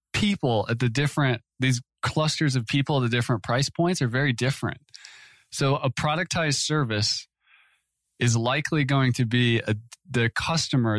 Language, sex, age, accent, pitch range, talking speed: English, male, 20-39, American, 115-135 Hz, 155 wpm